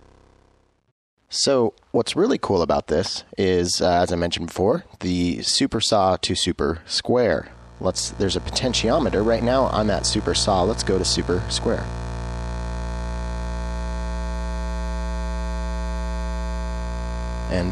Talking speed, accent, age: 115 wpm, American, 30-49